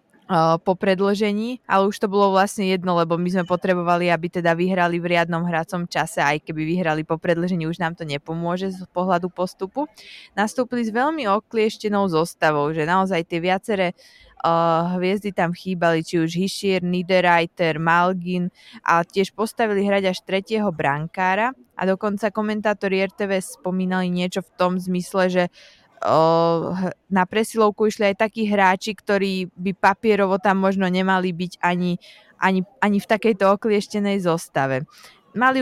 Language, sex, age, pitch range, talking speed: Slovak, female, 20-39, 165-200 Hz, 145 wpm